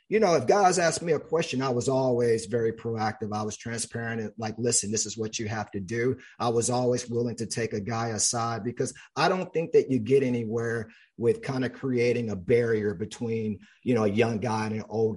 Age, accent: 40-59, American